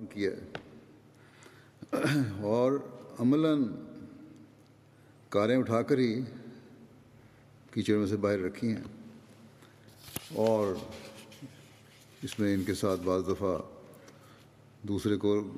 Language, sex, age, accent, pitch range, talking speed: Russian, male, 50-69, Indian, 105-130 Hz, 70 wpm